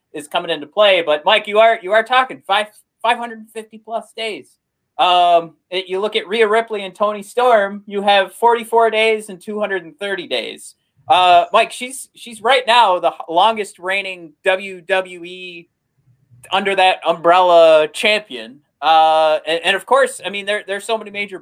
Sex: male